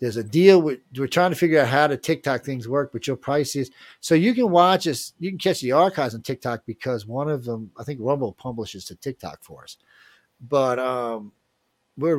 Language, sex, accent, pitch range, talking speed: English, male, American, 100-130 Hz, 215 wpm